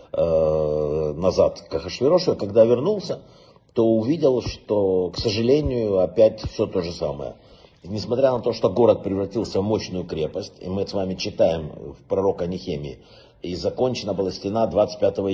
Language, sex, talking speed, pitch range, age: Russian, male, 155 wpm, 95-145 Hz, 50-69